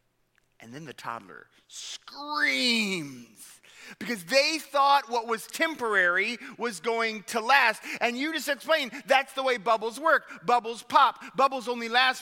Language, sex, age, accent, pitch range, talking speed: English, male, 40-59, American, 145-230 Hz, 140 wpm